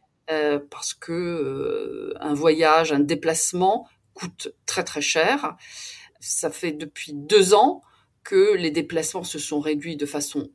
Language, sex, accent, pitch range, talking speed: French, female, French, 150-245 Hz, 135 wpm